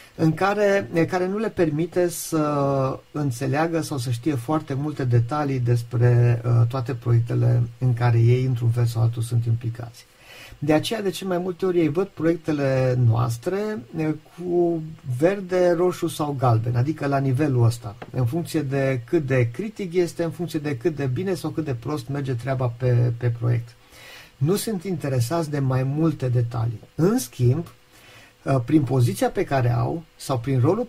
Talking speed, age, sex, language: 165 wpm, 50-69, male, English